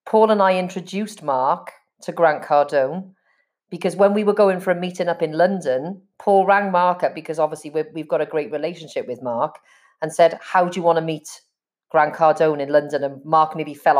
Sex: female